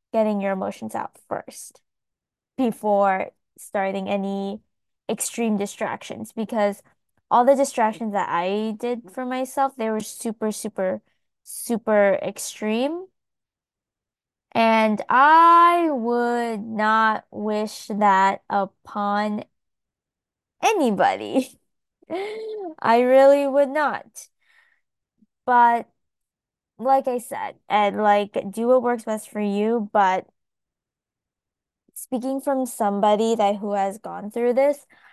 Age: 20-39